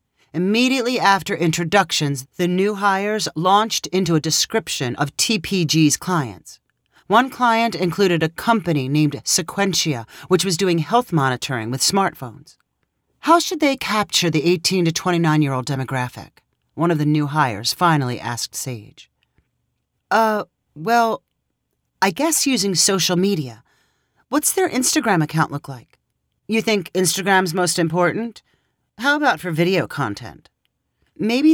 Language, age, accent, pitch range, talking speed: English, 40-59, American, 140-205 Hz, 130 wpm